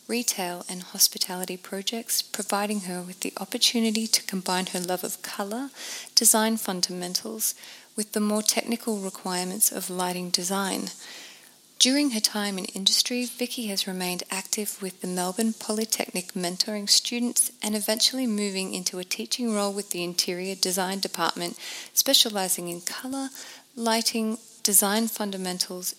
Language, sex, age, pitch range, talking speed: English, female, 30-49, 185-225 Hz, 135 wpm